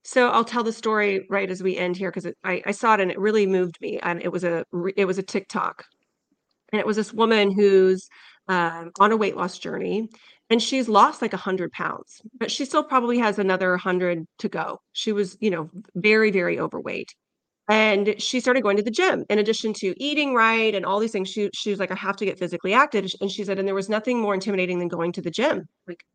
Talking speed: 235 wpm